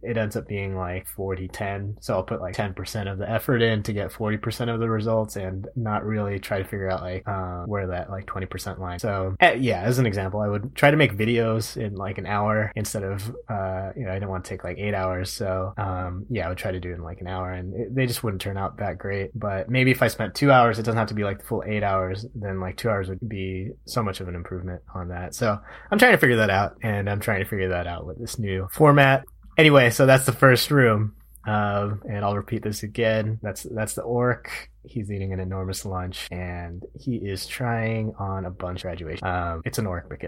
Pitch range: 95-115 Hz